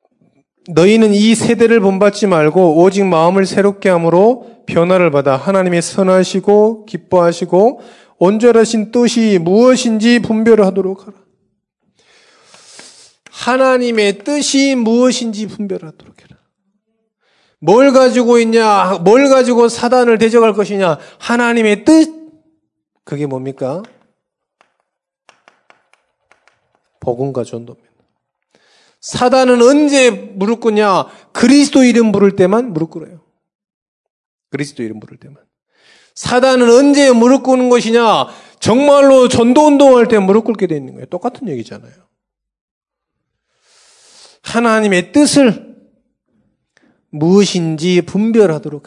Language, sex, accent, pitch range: Korean, male, native, 185-250 Hz